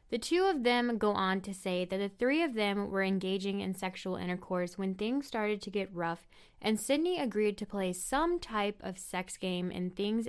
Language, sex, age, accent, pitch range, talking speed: English, female, 10-29, American, 185-235 Hz, 210 wpm